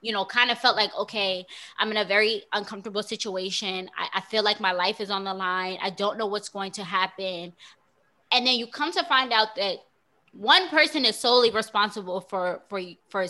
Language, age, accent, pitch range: English, 20-39, American, 200-255 Hz